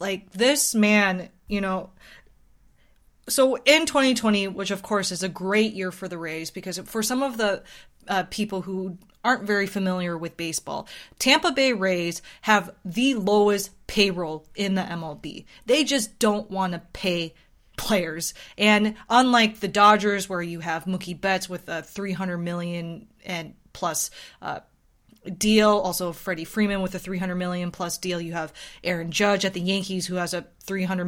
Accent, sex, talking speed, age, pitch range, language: American, female, 165 wpm, 20-39, 175-210 Hz, English